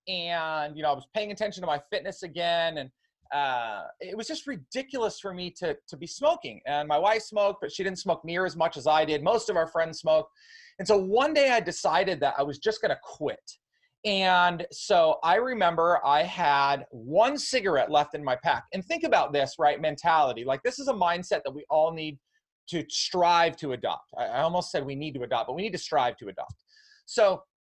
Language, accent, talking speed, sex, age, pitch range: English, American, 220 wpm, male, 30-49, 155-230 Hz